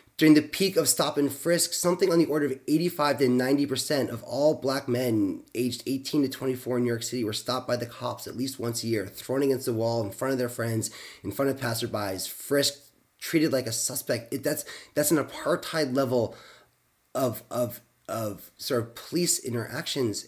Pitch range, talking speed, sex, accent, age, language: 110-135 Hz, 200 wpm, male, American, 30-49, English